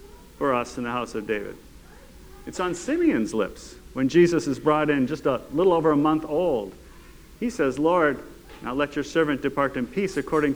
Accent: American